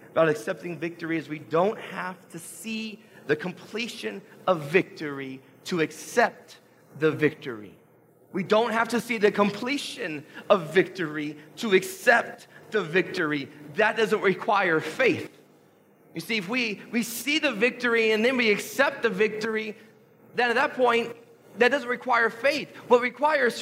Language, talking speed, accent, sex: English, 145 wpm, American, male